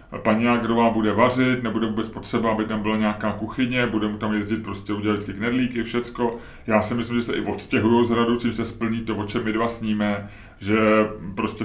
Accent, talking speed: native, 210 wpm